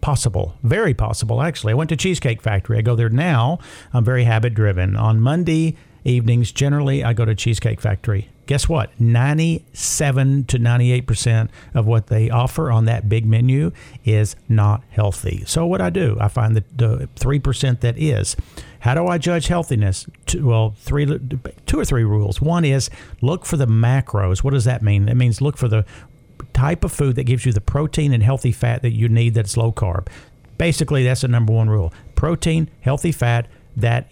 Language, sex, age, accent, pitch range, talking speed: English, male, 50-69, American, 110-135 Hz, 185 wpm